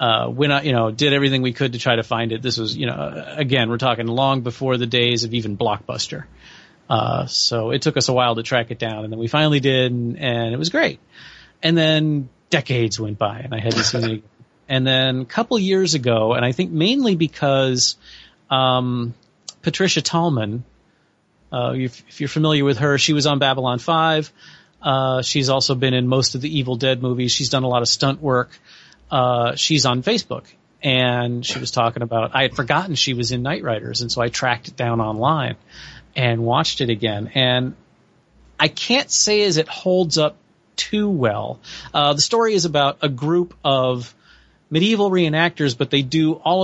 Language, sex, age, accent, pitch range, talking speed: English, male, 30-49, American, 120-150 Hz, 195 wpm